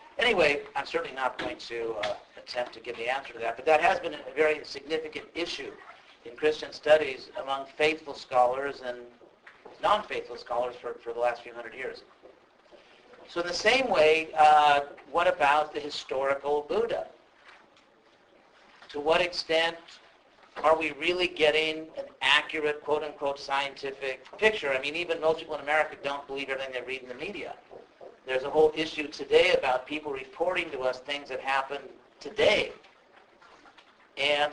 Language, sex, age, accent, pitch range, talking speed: English, male, 50-69, American, 130-160 Hz, 160 wpm